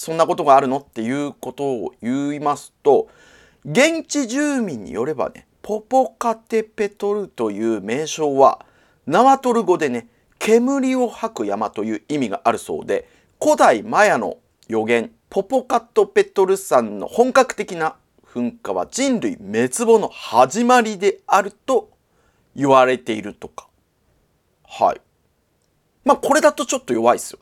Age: 40-59